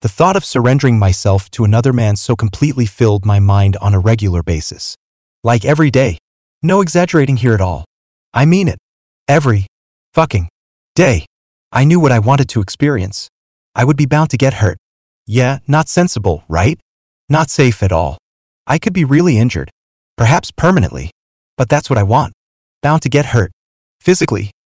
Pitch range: 100-140 Hz